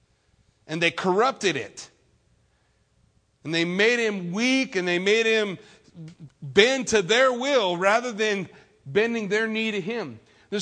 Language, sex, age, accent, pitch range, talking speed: English, male, 50-69, American, 160-220 Hz, 140 wpm